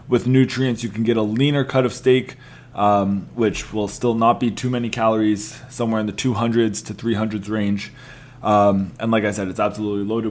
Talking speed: 200 wpm